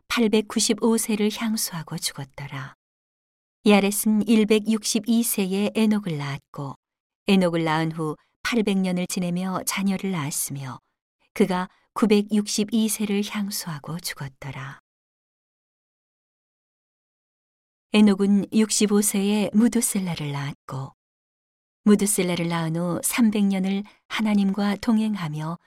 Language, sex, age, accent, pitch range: Korean, female, 40-59, native, 160-215 Hz